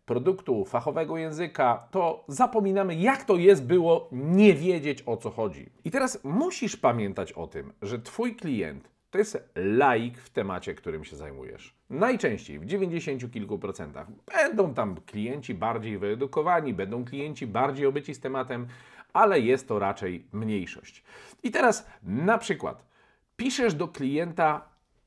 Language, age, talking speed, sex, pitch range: Polish, 50-69, 140 wpm, male, 125-195 Hz